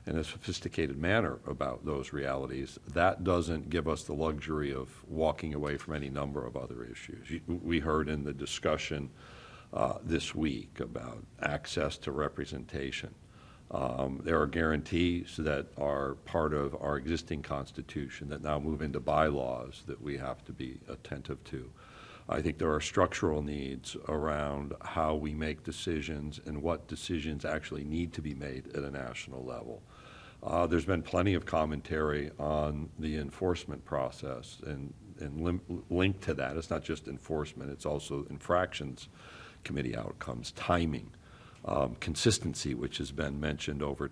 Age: 60-79